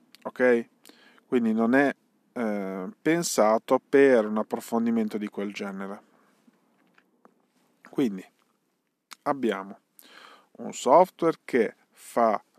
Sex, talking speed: male, 85 wpm